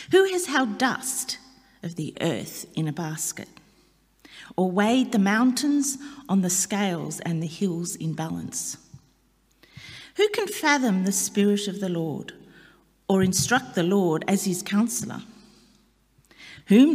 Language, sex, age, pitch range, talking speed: English, female, 40-59, 185-250 Hz, 135 wpm